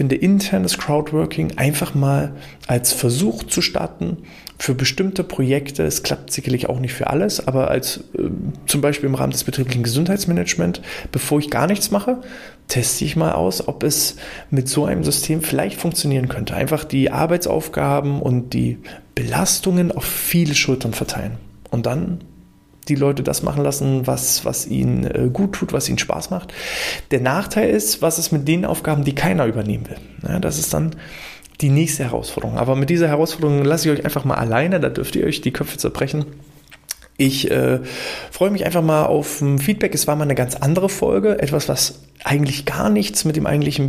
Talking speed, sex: 180 wpm, male